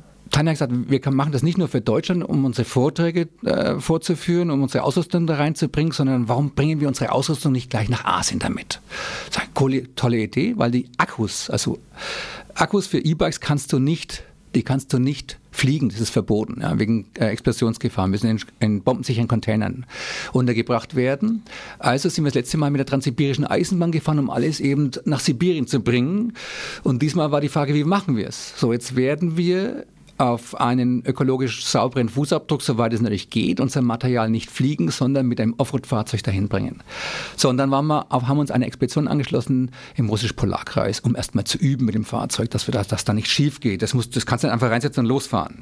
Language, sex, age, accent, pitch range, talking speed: German, male, 50-69, German, 120-155 Hz, 200 wpm